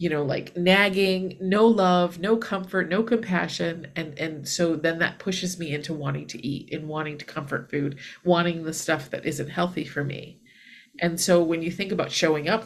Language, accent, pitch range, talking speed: English, American, 165-235 Hz, 200 wpm